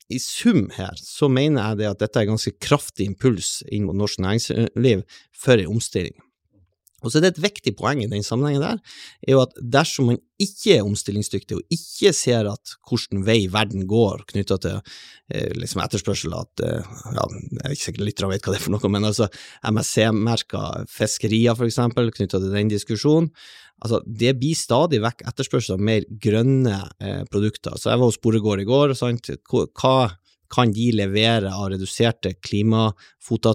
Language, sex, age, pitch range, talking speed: English, male, 30-49, 105-130 Hz, 200 wpm